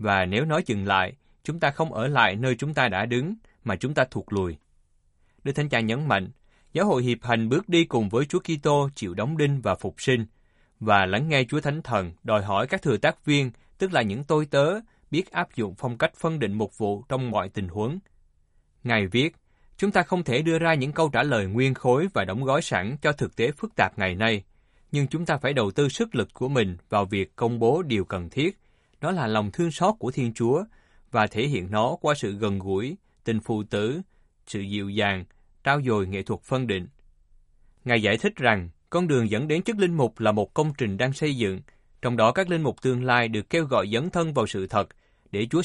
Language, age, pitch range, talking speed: Vietnamese, 20-39, 100-145 Hz, 230 wpm